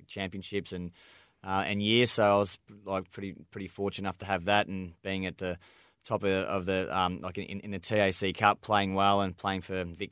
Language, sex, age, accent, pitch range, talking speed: English, male, 20-39, Australian, 90-100 Hz, 220 wpm